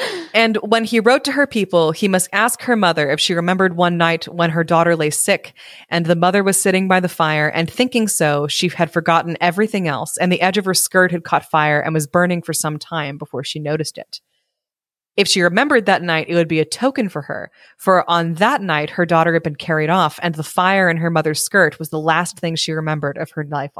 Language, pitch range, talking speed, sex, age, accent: English, 155-195 Hz, 240 wpm, female, 20-39, American